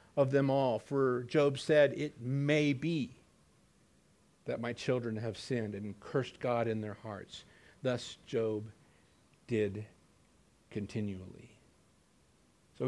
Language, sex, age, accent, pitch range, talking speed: English, male, 50-69, American, 110-160 Hz, 115 wpm